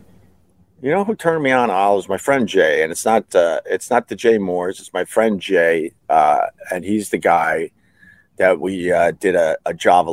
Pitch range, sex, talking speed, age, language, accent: 95-140 Hz, male, 215 wpm, 50-69, English, American